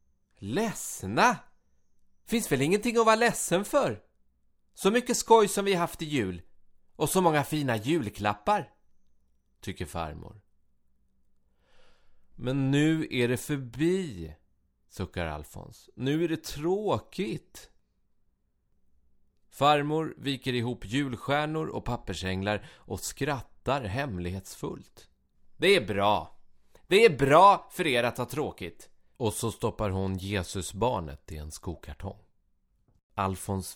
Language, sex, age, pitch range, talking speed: English, male, 30-49, 90-130 Hz, 115 wpm